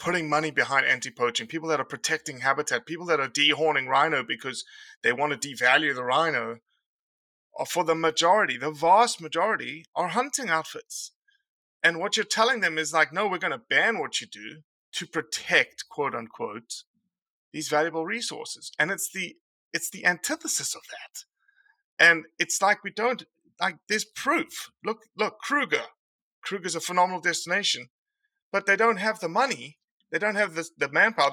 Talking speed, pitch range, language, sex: 165 wpm, 155-245 Hz, English, male